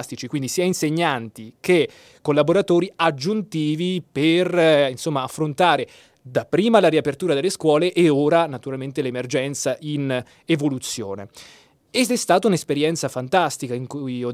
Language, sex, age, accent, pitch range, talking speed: Italian, male, 20-39, native, 135-175 Hz, 120 wpm